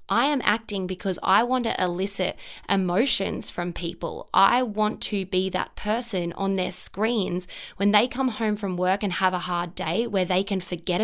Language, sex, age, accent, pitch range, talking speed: English, female, 20-39, Australian, 180-220 Hz, 190 wpm